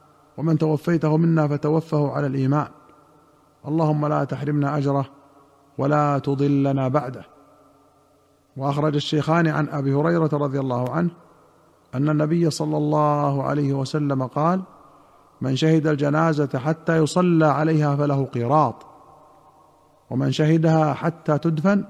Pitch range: 145-160 Hz